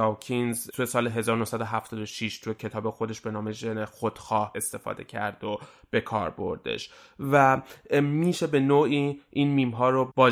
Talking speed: 145 wpm